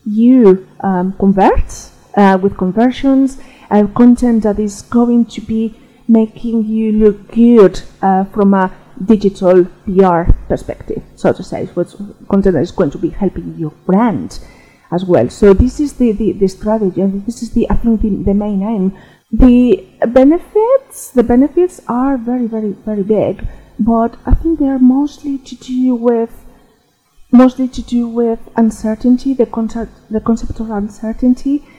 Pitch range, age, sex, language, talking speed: 195-245 Hz, 30-49, female, English, 160 wpm